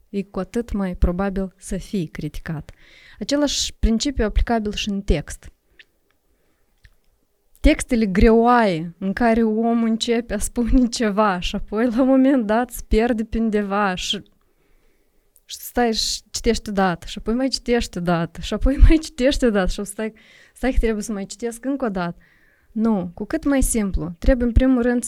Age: 20-39